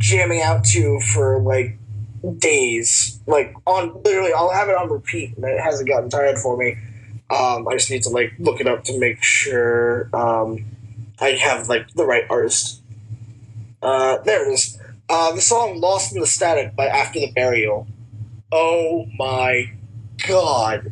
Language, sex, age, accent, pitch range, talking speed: English, male, 20-39, American, 110-175 Hz, 165 wpm